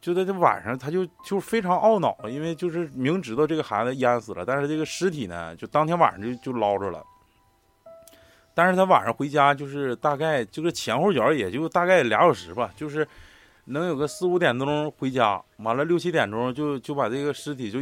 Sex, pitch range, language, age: male, 105-145 Hz, Chinese, 20-39